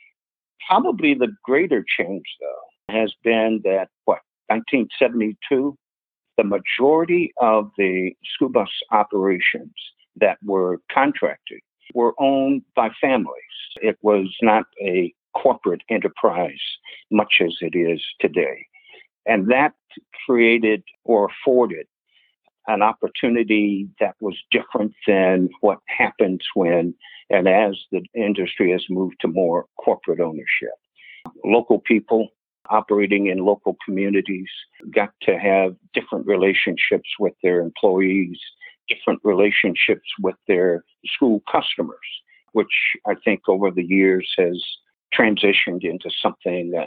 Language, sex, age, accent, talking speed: English, male, 60-79, American, 115 wpm